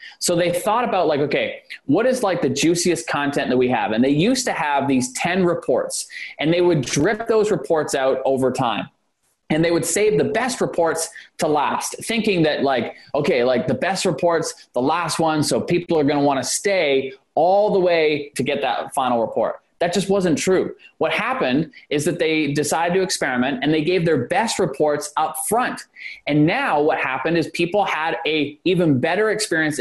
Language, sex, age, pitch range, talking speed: English, male, 20-39, 150-200 Hz, 200 wpm